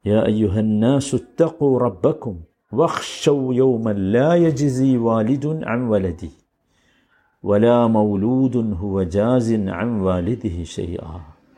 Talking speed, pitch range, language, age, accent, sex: 100 wpm, 100-135 Hz, Malayalam, 50-69, native, male